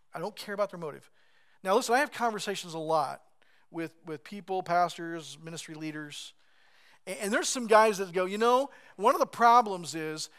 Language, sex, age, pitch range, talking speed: English, male, 40-59, 165-220 Hz, 190 wpm